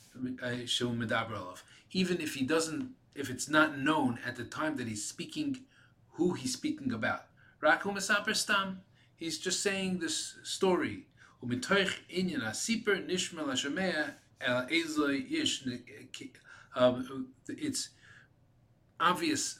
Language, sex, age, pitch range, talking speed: English, male, 40-59, 125-195 Hz, 75 wpm